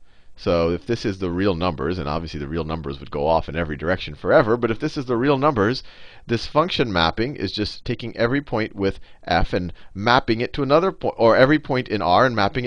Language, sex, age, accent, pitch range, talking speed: English, male, 40-59, American, 95-140 Hz, 230 wpm